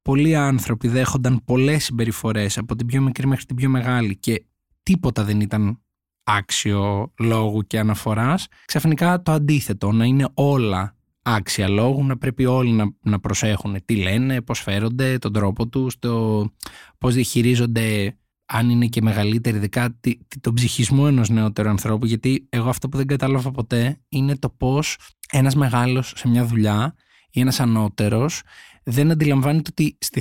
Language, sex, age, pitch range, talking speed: Greek, male, 20-39, 110-135 Hz, 150 wpm